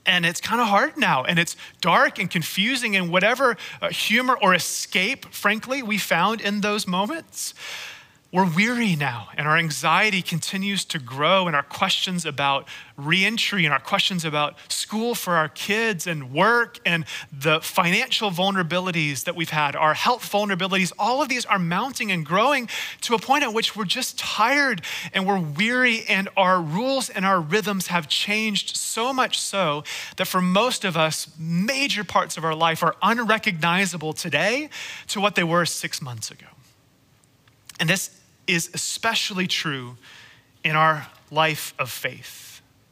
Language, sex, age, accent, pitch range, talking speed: English, male, 30-49, American, 155-210 Hz, 160 wpm